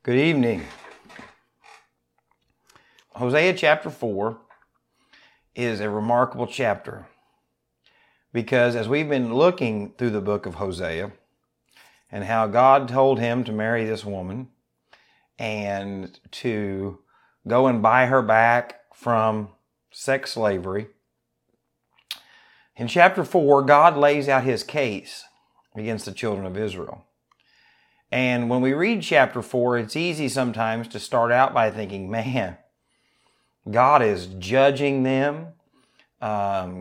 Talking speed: 115 wpm